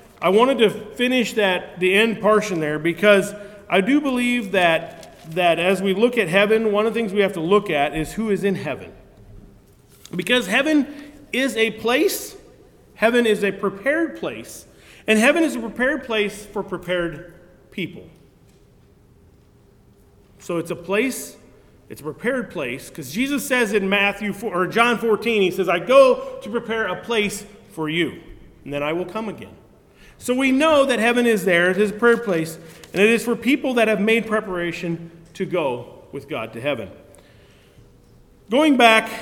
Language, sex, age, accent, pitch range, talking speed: English, male, 40-59, American, 175-235 Hz, 175 wpm